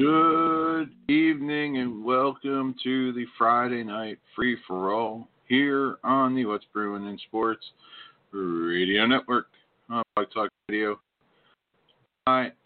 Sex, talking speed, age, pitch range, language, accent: male, 115 wpm, 50-69, 110-145 Hz, English, American